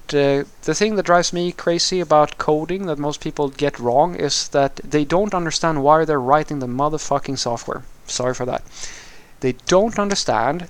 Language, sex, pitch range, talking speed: English, male, 135-185 Hz, 175 wpm